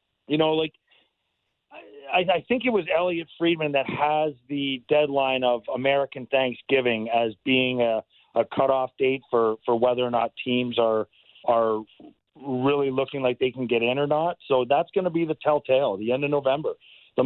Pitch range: 130-165 Hz